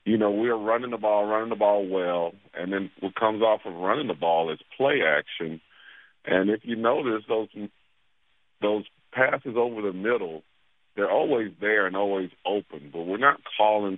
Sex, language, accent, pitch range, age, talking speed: male, English, American, 85-110 Hz, 50-69, 185 wpm